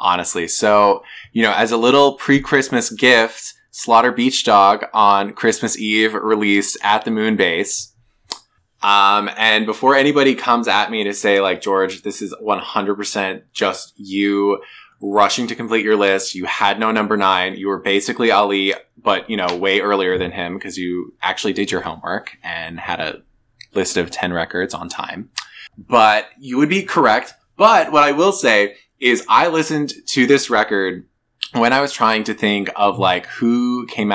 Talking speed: 170 wpm